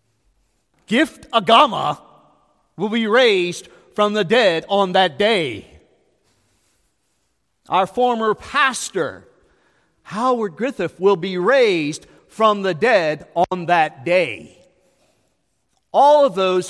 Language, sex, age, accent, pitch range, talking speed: English, male, 40-59, American, 185-295 Hz, 100 wpm